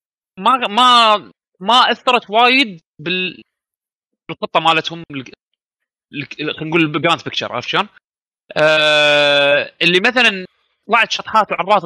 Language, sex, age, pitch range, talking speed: Arabic, male, 30-49, 150-195 Hz, 100 wpm